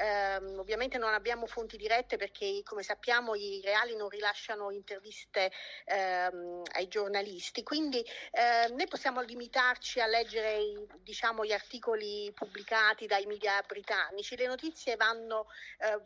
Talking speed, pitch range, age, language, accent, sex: 135 wpm, 205-255 Hz, 40-59, Italian, native, female